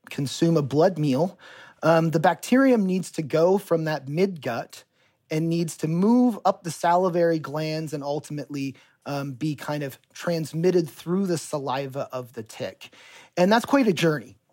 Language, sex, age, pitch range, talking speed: English, male, 30-49, 150-180 Hz, 165 wpm